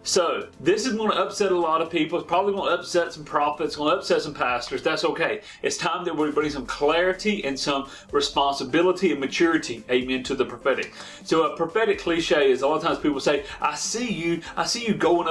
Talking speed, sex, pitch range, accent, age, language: 225 wpm, male, 160-215 Hz, American, 30-49, English